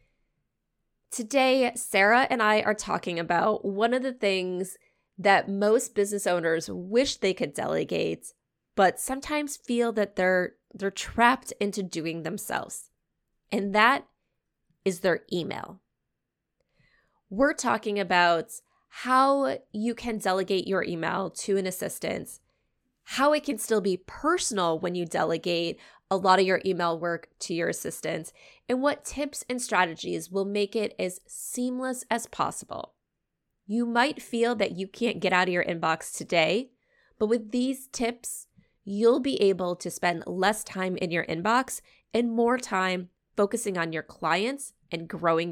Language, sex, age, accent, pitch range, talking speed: English, female, 20-39, American, 185-245 Hz, 145 wpm